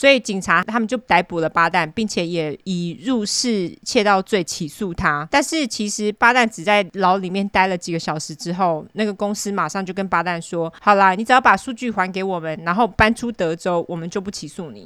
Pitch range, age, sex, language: 175-215 Hz, 20-39, female, Chinese